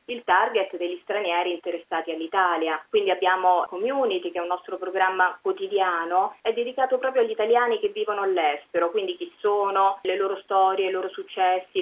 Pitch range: 185-230 Hz